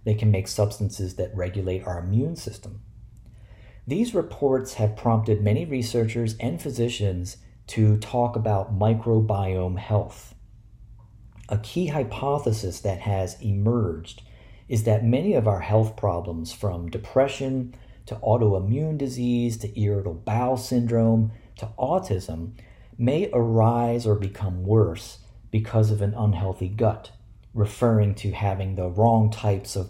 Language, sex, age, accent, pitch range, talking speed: English, male, 40-59, American, 100-115 Hz, 125 wpm